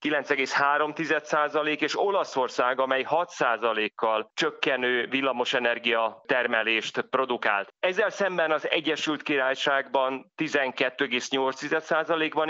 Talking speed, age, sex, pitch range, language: 70 wpm, 30-49, male, 125-155 Hz, Hungarian